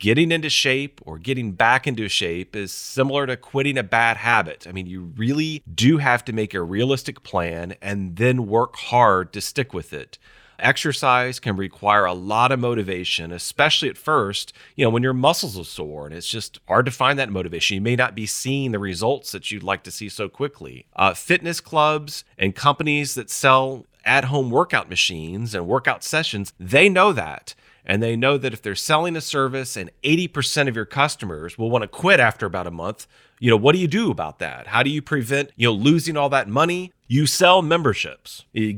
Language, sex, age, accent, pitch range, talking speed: English, male, 40-59, American, 105-140 Hz, 205 wpm